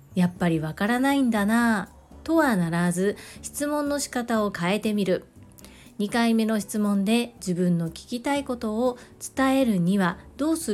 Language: Japanese